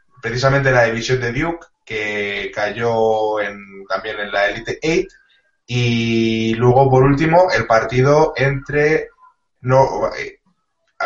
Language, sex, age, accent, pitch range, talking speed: Spanish, male, 20-39, Spanish, 115-140 Hz, 120 wpm